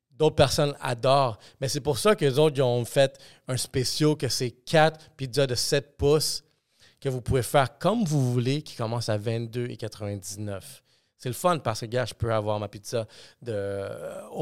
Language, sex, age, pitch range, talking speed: French, male, 30-49, 110-135 Hz, 185 wpm